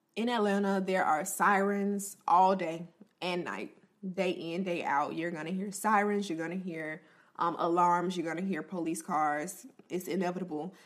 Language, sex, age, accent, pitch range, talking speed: English, female, 20-39, American, 175-205 Hz, 170 wpm